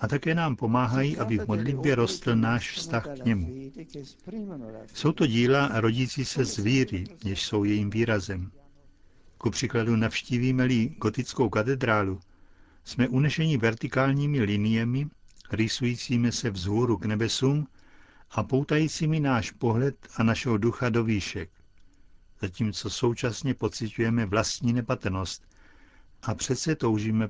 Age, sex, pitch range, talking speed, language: 60-79, male, 105-130 Hz, 120 wpm, Czech